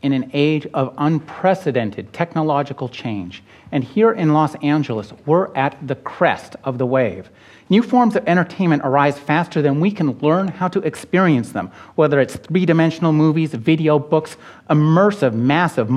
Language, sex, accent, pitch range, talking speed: English, male, American, 125-170 Hz, 155 wpm